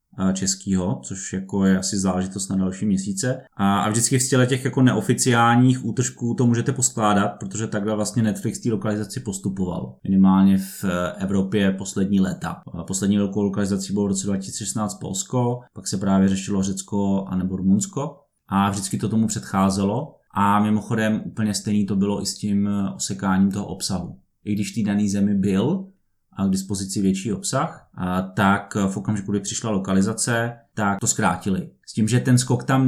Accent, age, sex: native, 20-39, male